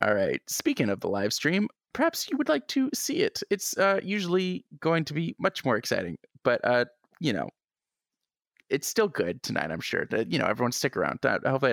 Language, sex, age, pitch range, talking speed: English, male, 20-39, 125-165 Hz, 215 wpm